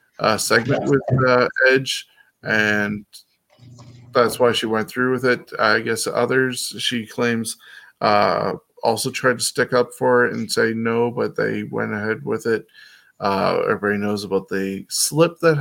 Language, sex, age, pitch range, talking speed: English, male, 20-39, 110-130 Hz, 160 wpm